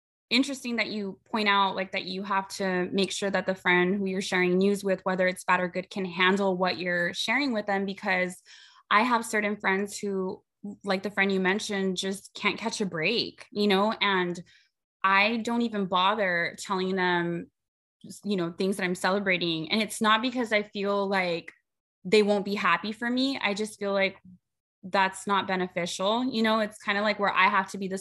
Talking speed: 205 wpm